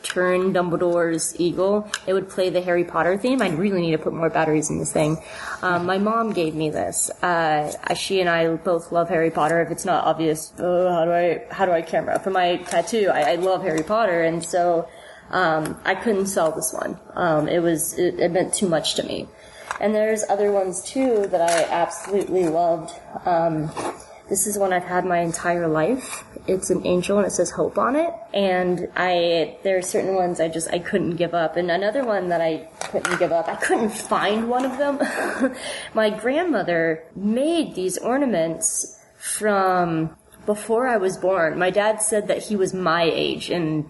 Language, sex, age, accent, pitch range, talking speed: English, female, 20-39, American, 170-200 Hz, 195 wpm